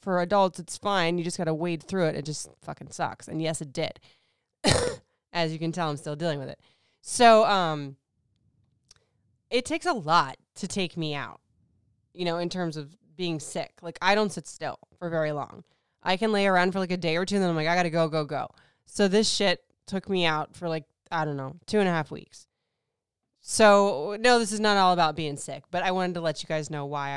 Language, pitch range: English, 155-200 Hz